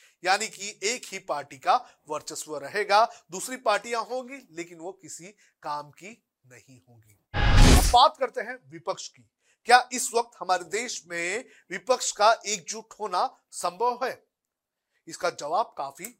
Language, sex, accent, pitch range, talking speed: Hindi, male, native, 165-225 Hz, 130 wpm